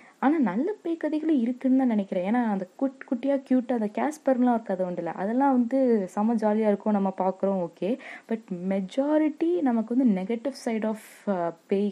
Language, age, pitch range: Tamil, 20-39, 190-250 Hz